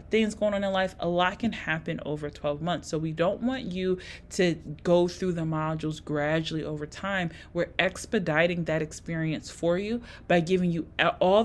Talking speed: 185 wpm